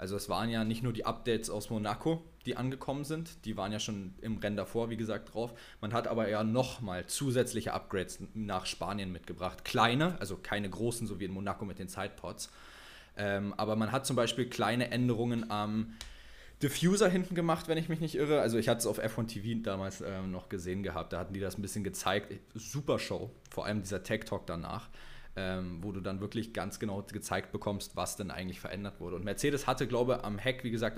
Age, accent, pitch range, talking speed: 20-39, German, 95-120 Hz, 215 wpm